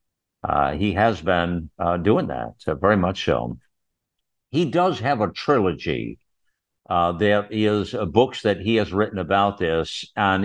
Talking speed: 160 wpm